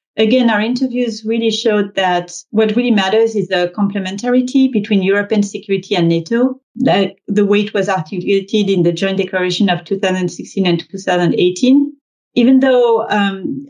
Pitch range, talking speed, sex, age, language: 180-220 Hz, 150 wpm, female, 30-49, English